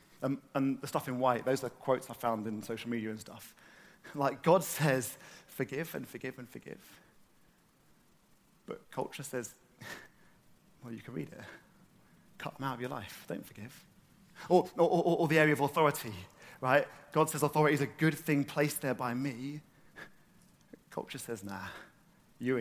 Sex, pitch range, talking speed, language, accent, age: male, 120-155 Hz, 165 wpm, English, British, 30-49